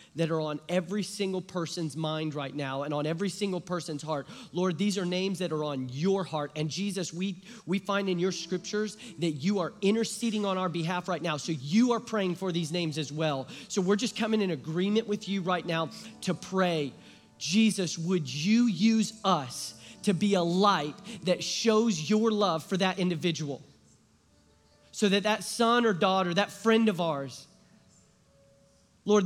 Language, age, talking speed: English, 30-49, 185 wpm